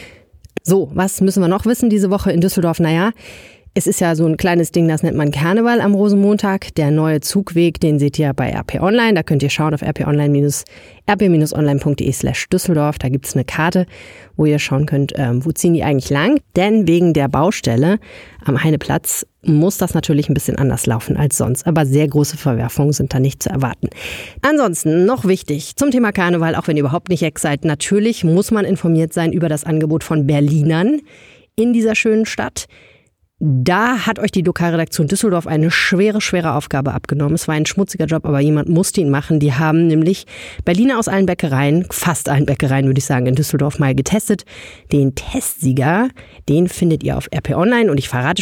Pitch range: 145-190 Hz